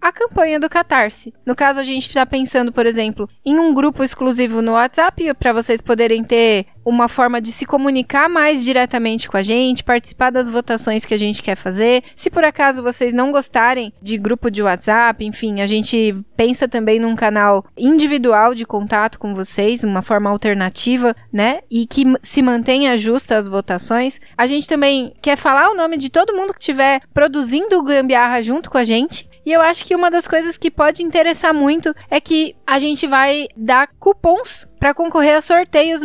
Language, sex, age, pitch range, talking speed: Portuguese, female, 20-39, 225-295 Hz, 190 wpm